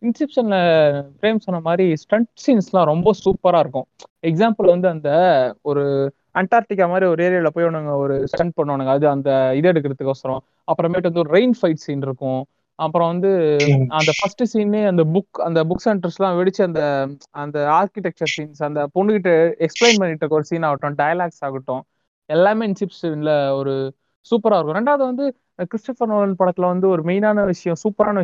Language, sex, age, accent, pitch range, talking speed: Tamil, male, 20-39, native, 155-205 Hz, 155 wpm